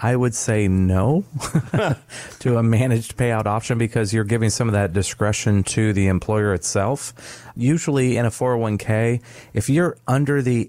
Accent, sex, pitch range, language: American, male, 105-120 Hz, English